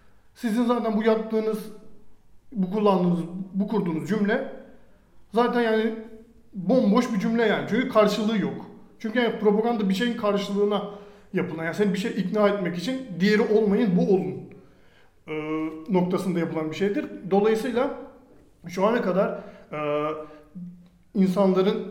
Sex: male